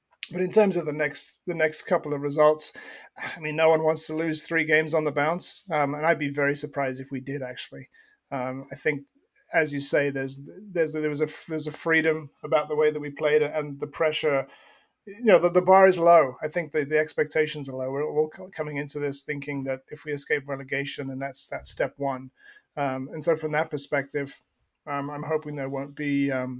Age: 30-49